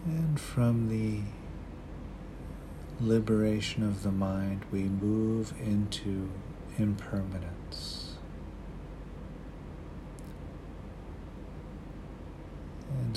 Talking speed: 55 wpm